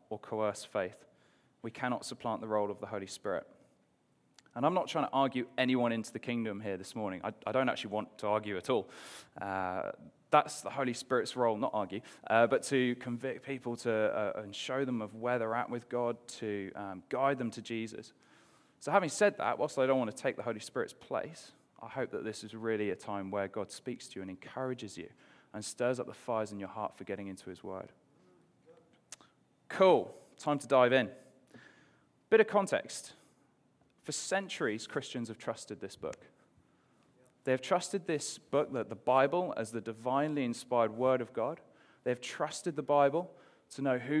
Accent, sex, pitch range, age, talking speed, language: British, male, 110-140 Hz, 20-39, 195 wpm, English